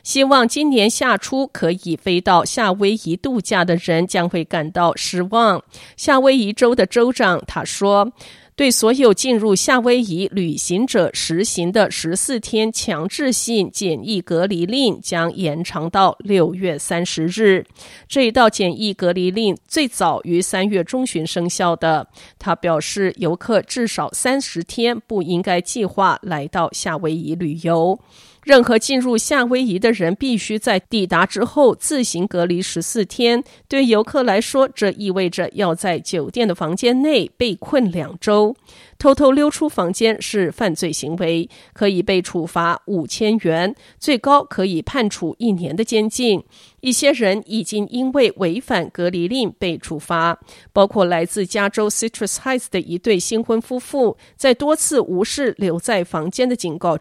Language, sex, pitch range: Chinese, female, 175-235 Hz